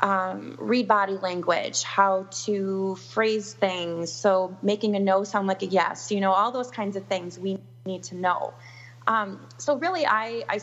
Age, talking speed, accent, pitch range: 20-39, 180 wpm, American, 175-200 Hz